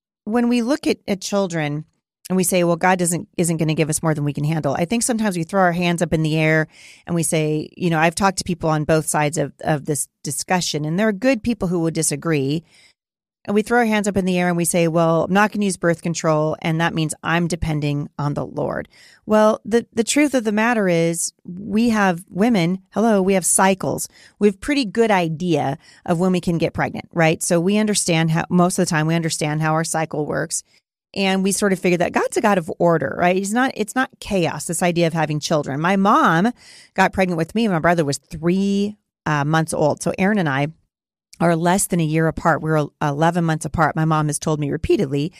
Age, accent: 40-59, American